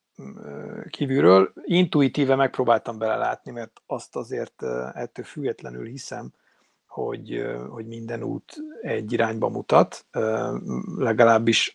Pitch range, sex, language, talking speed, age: 110-130 Hz, male, Hungarian, 90 wpm, 50-69